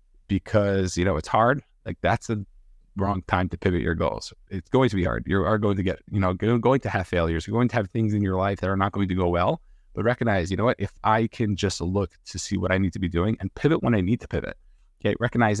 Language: English